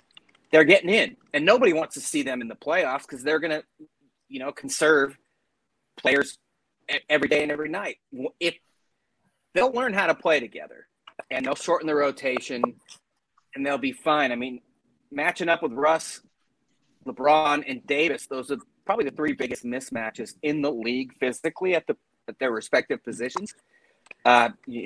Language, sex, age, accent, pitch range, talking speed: English, male, 30-49, American, 120-150 Hz, 160 wpm